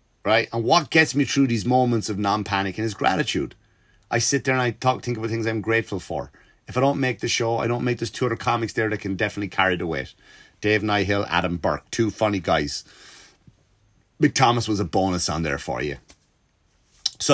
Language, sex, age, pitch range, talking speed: English, male, 30-49, 95-130 Hz, 210 wpm